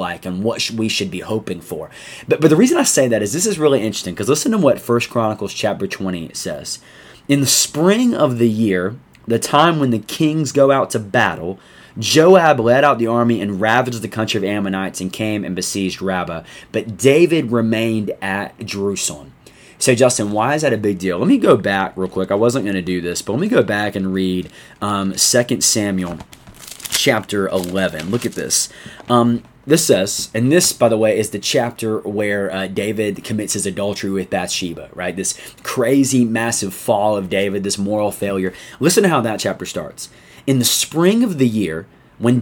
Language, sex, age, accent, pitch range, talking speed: English, male, 20-39, American, 100-125 Hz, 200 wpm